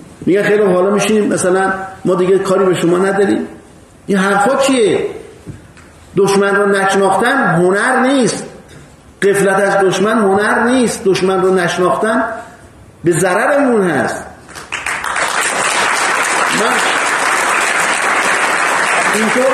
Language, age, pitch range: Persian, 50-69, 190-240 Hz